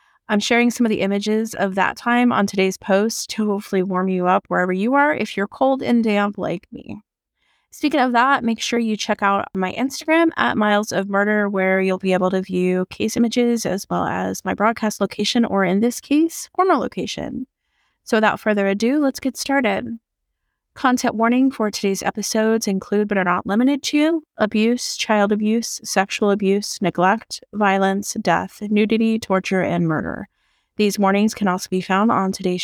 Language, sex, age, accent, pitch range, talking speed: English, female, 20-39, American, 190-230 Hz, 180 wpm